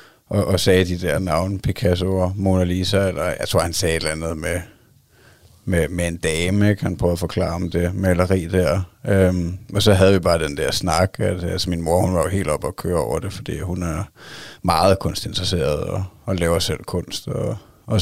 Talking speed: 225 wpm